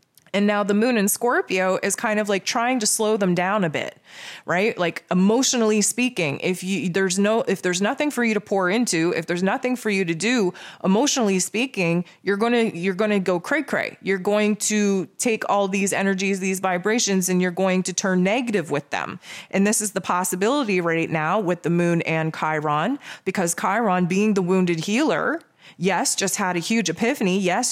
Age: 20-39